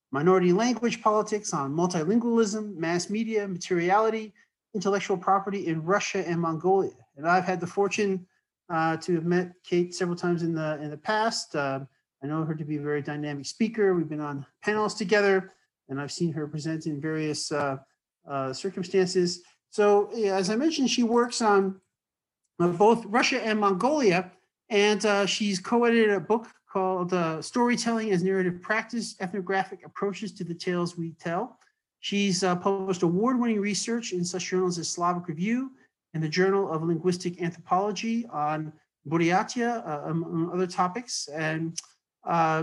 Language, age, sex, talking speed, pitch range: English, 40-59, male, 155 wpm, 165-205 Hz